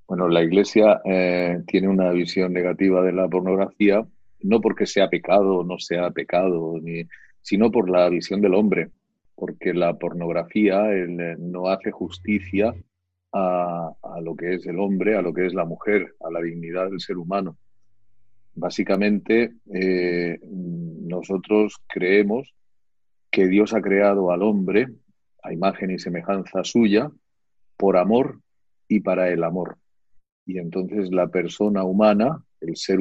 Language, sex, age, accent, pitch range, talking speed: Spanish, male, 40-59, Spanish, 90-105 Hz, 140 wpm